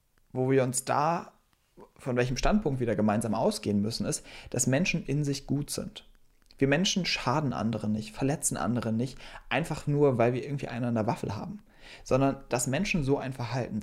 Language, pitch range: German, 115-145 Hz